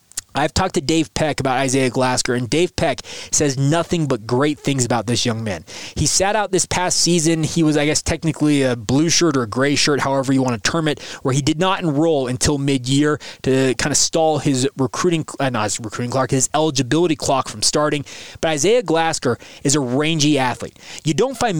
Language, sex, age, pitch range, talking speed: English, male, 20-39, 130-165 Hz, 210 wpm